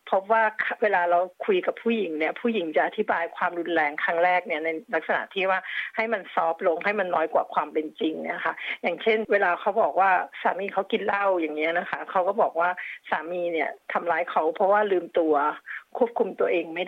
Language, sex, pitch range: Thai, female, 175-225 Hz